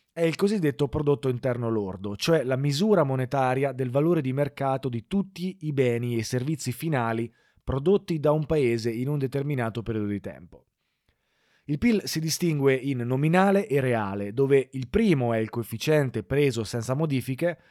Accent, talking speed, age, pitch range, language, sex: native, 165 wpm, 20-39, 115-155 Hz, Italian, male